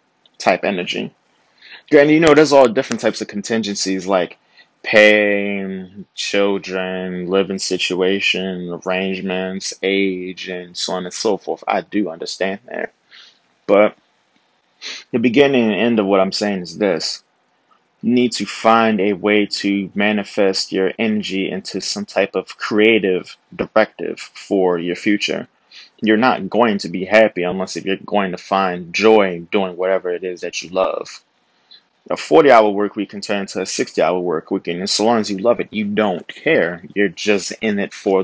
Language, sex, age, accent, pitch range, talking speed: English, male, 20-39, American, 95-105 Hz, 165 wpm